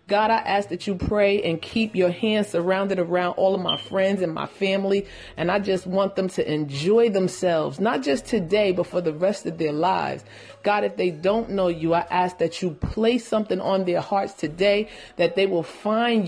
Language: English